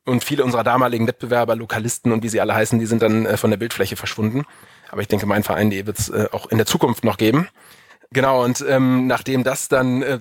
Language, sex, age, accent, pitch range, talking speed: German, male, 20-39, German, 115-135 Hz, 230 wpm